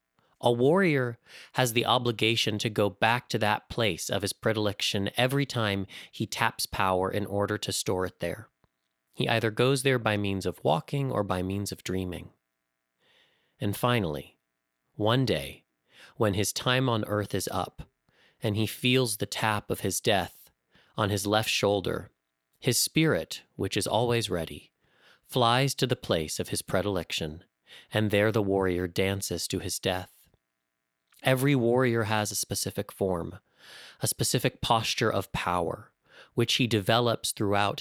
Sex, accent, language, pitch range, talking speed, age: male, American, English, 95-120 Hz, 155 wpm, 30-49